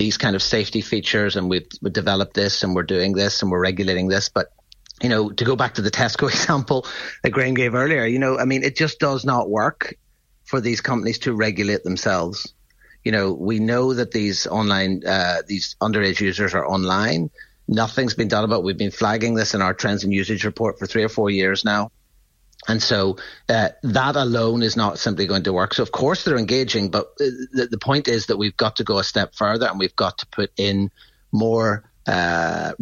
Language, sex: English, male